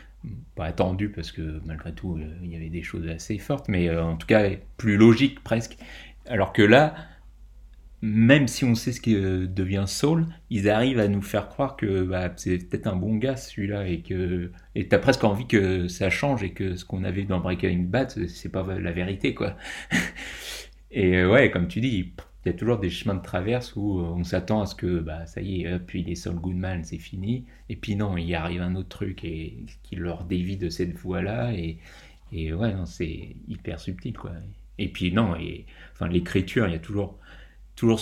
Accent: French